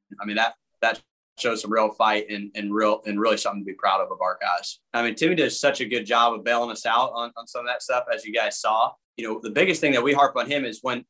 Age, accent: 20-39, American